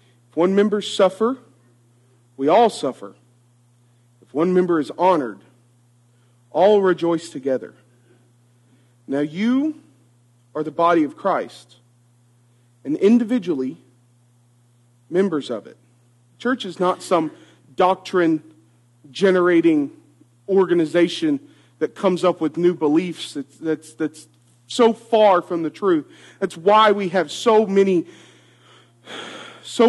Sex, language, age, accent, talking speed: male, English, 40-59, American, 105 wpm